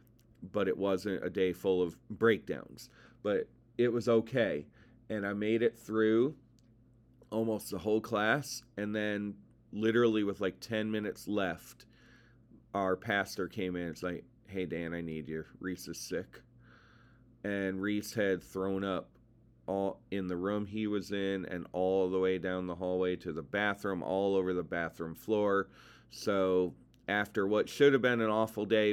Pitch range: 95-115 Hz